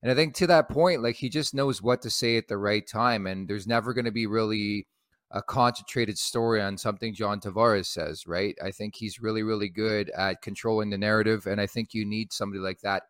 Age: 30-49